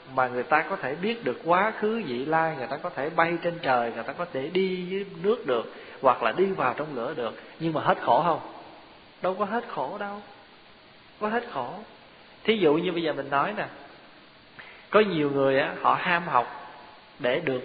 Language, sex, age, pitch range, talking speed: Vietnamese, male, 20-39, 135-175 Hz, 210 wpm